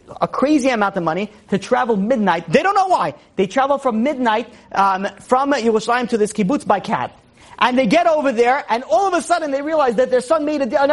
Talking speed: 235 wpm